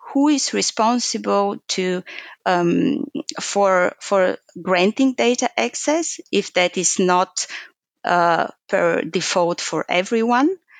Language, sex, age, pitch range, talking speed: English, female, 30-49, 190-250 Hz, 105 wpm